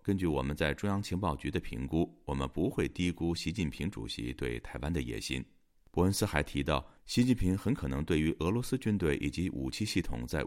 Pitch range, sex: 70-100 Hz, male